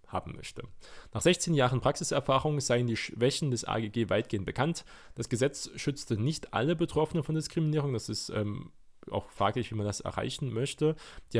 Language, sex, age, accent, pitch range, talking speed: German, male, 20-39, German, 105-135 Hz, 170 wpm